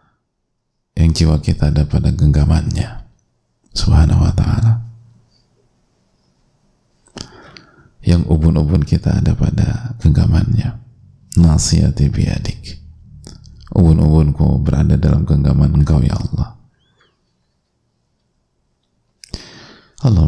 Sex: male